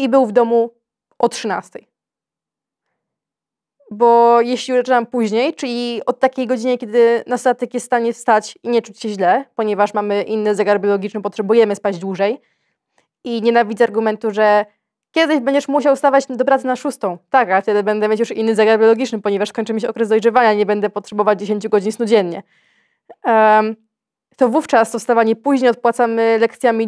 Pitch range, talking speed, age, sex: 215-250 Hz, 165 wpm, 20-39, female